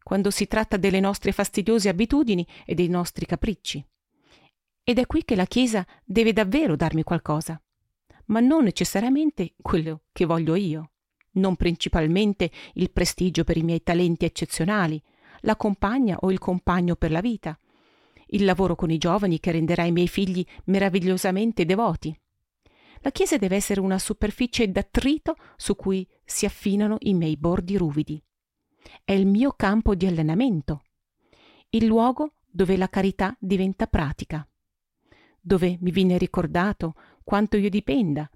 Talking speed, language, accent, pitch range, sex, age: 145 wpm, Italian, native, 170-220 Hz, female, 40-59